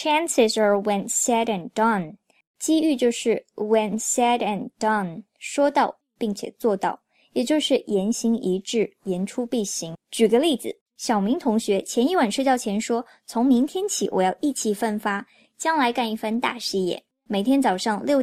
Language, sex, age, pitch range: Chinese, male, 20-39, 195-255 Hz